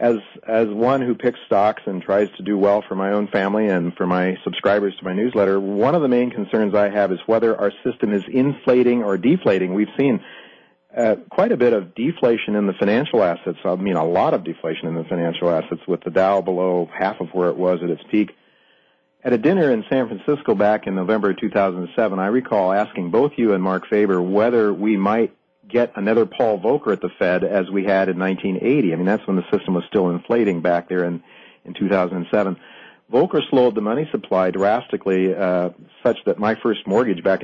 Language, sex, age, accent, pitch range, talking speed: English, male, 40-59, American, 90-105 Hz, 210 wpm